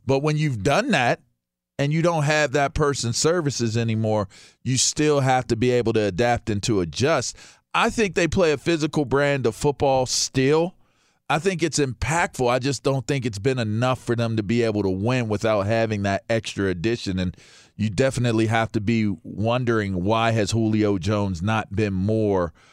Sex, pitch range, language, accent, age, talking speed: male, 105-130 Hz, English, American, 40-59, 185 wpm